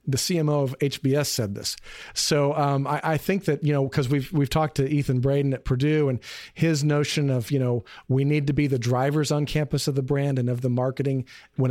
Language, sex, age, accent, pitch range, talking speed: English, male, 40-59, American, 130-150 Hz, 230 wpm